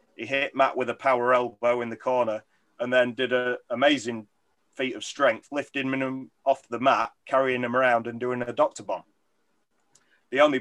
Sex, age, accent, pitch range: male, 30-49, British, 120-140 Hz